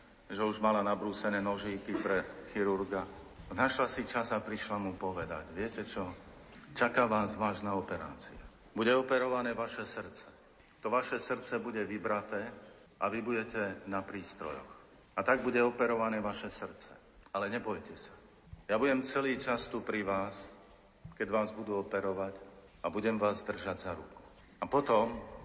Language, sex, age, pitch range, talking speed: Slovak, male, 50-69, 100-125 Hz, 145 wpm